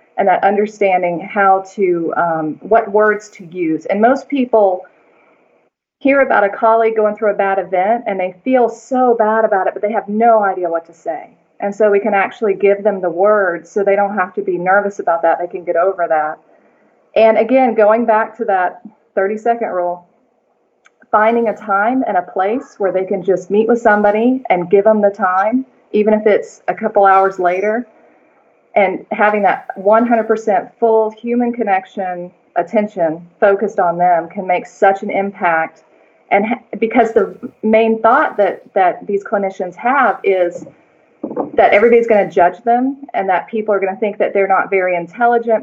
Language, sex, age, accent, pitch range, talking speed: English, female, 30-49, American, 185-225 Hz, 185 wpm